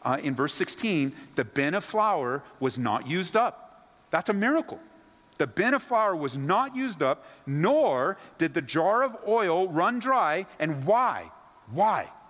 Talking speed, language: 165 wpm, English